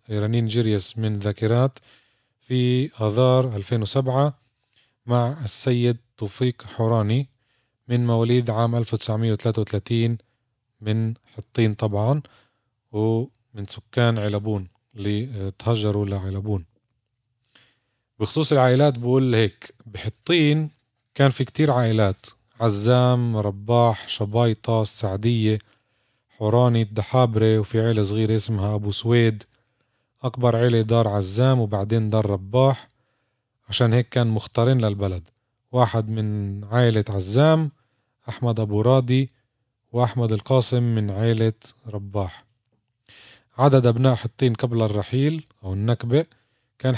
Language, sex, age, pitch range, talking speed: Arabic, male, 30-49, 110-125 Hz, 95 wpm